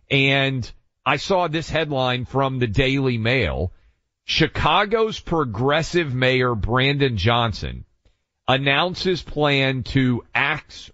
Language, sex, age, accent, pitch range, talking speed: English, male, 40-59, American, 115-150 Hz, 100 wpm